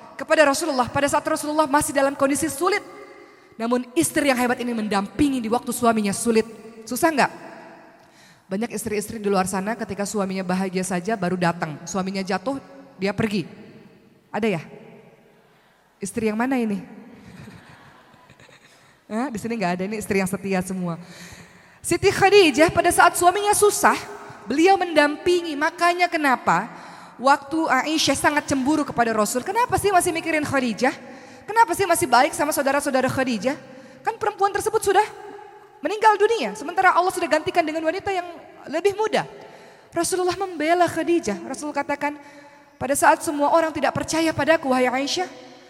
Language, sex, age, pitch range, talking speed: Indonesian, female, 20-39, 230-345 Hz, 145 wpm